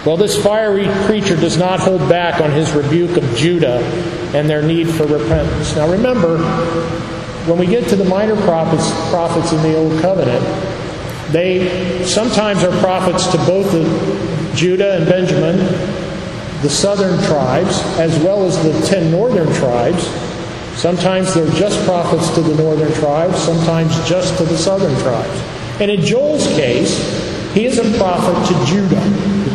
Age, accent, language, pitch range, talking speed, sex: 50-69, American, English, 150-180 Hz, 155 wpm, male